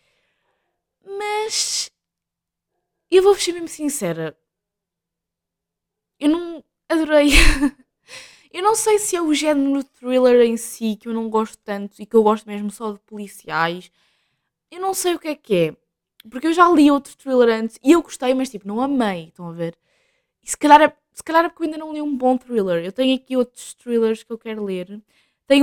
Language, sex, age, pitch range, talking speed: Portuguese, female, 20-39, 210-275 Hz, 190 wpm